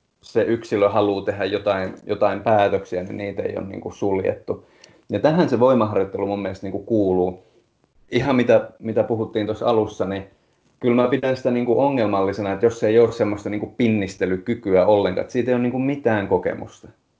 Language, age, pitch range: Finnish, 30-49, 100-120 Hz